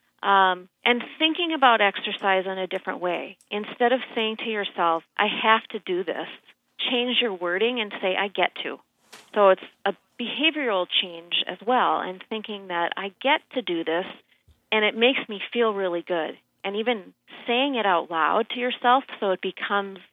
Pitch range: 190-245 Hz